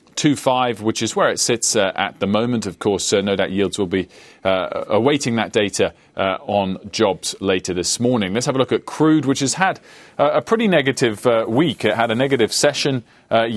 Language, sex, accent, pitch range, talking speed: English, male, British, 100-140 Hz, 220 wpm